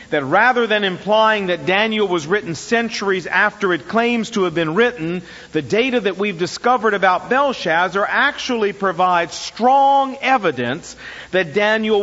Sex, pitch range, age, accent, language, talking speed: male, 185-255 Hz, 50-69, American, English, 145 wpm